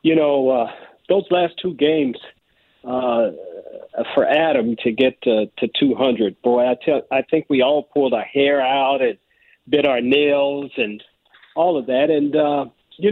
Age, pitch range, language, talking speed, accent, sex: 50-69, 125-155 Hz, English, 170 wpm, American, male